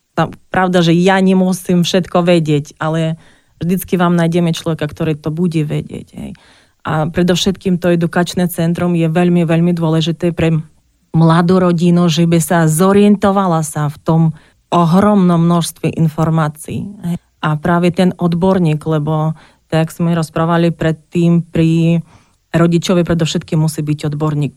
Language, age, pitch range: Slovak, 30-49, 155-180 Hz